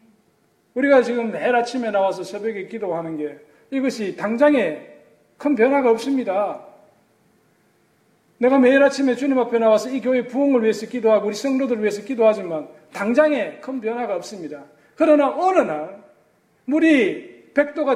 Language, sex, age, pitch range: Korean, male, 40-59, 200-265 Hz